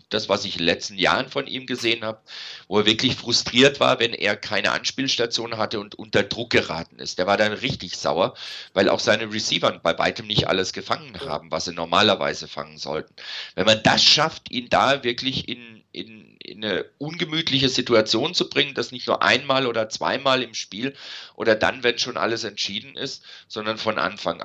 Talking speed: 195 wpm